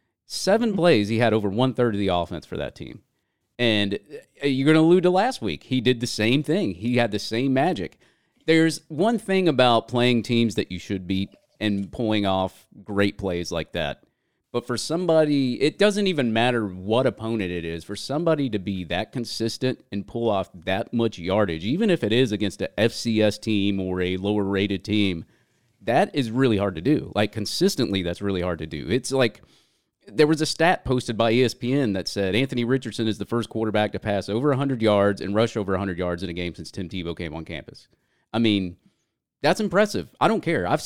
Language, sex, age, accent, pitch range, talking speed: English, male, 30-49, American, 100-135 Hz, 205 wpm